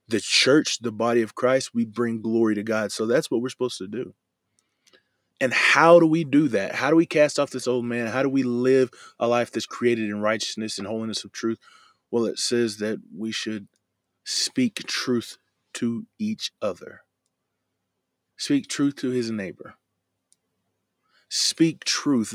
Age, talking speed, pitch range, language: 20-39, 170 wpm, 105-130 Hz, English